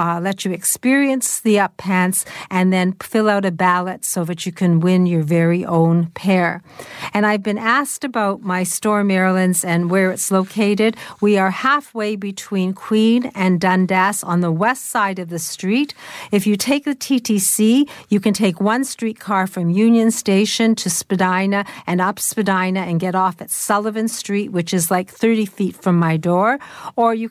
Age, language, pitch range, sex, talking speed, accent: 50-69, English, 185-220 Hz, female, 180 wpm, American